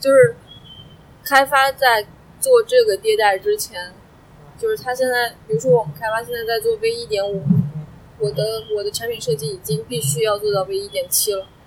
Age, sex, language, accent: 20-39, female, Chinese, native